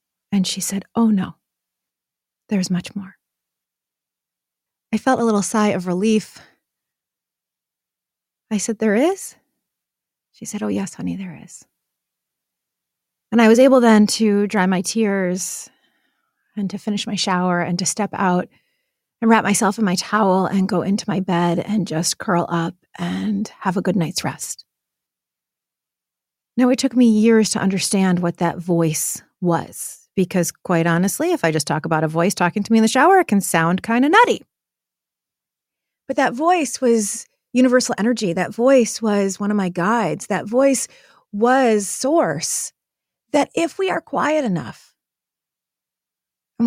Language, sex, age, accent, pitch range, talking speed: English, female, 30-49, American, 185-250 Hz, 155 wpm